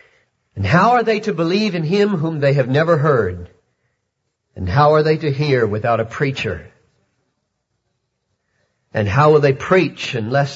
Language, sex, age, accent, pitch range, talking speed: English, male, 50-69, American, 110-160 Hz, 160 wpm